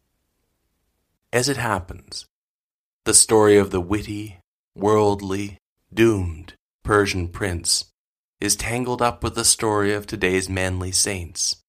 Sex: male